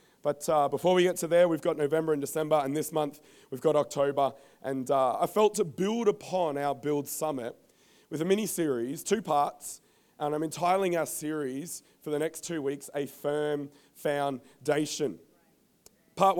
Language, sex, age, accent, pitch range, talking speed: English, male, 30-49, Australian, 145-190 Hz, 170 wpm